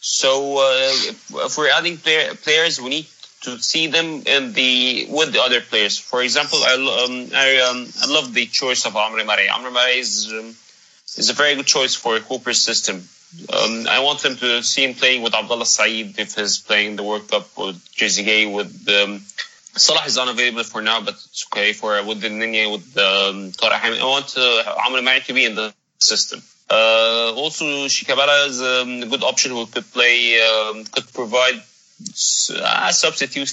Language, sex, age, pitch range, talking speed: English, male, 20-39, 110-135 Hz, 190 wpm